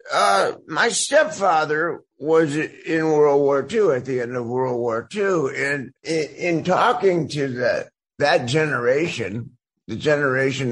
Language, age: English, 50-69